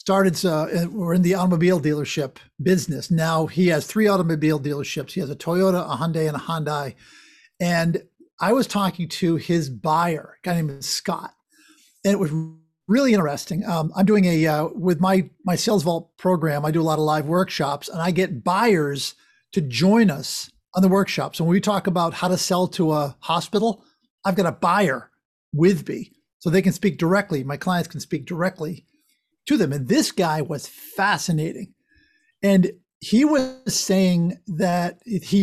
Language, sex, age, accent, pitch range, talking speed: English, male, 50-69, American, 160-200 Hz, 180 wpm